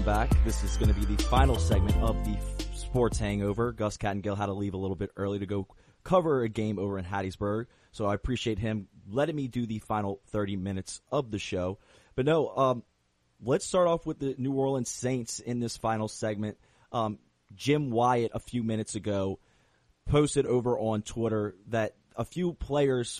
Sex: male